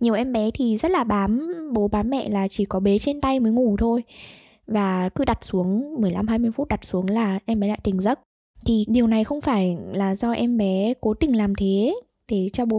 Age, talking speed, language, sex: 10-29, 230 wpm, Vietnamese, female